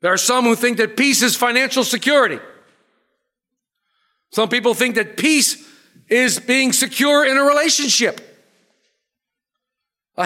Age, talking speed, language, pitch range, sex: 50-69, 130 wpm, English, 215-275 Hz, male